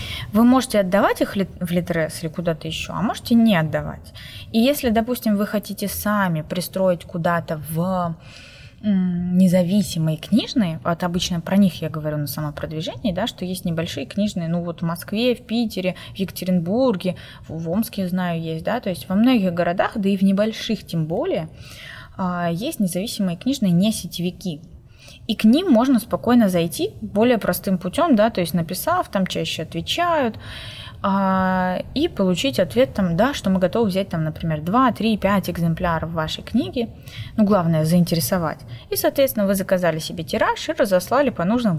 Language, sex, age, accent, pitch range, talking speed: Russian, female, 20-39, native, 165-220 Hz, 160 wpm